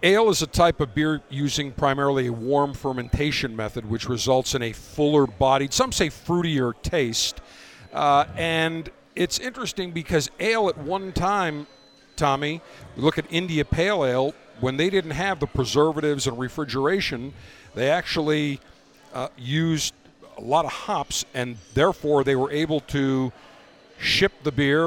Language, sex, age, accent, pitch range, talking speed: English, male, 50-69, American, 130-165 Hz, 145 wpm